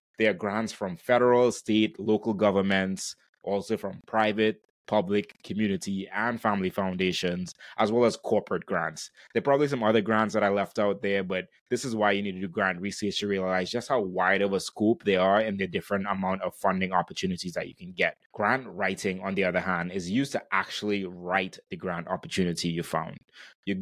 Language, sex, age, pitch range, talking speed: English, male, 20-39, 95-110 Hz, 200 wpm